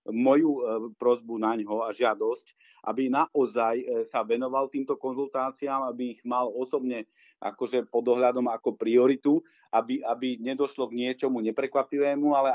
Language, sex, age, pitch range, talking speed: Slovak, male, 40-59, 120-145 Hz, 130 wpm